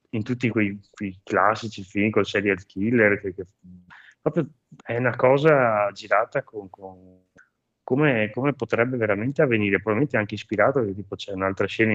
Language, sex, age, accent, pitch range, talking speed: Italian, male, 20-39, native, 90-110 Hz, 150 wpm